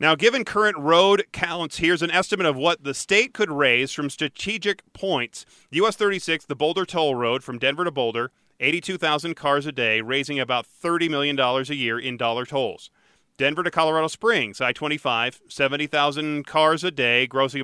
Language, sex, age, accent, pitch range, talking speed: English, male, 40-59, American, 130-170 Hz, 175 wpm